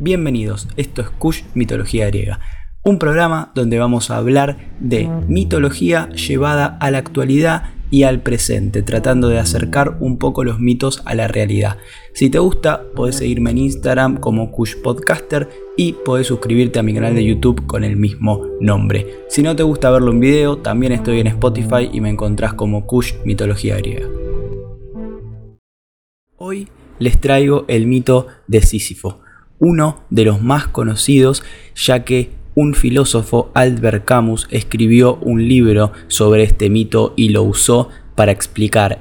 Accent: Argentinian